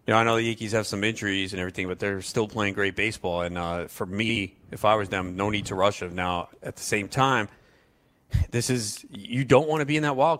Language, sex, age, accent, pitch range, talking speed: English, male, 30-49, American, 100-125 Hz, 260 wpm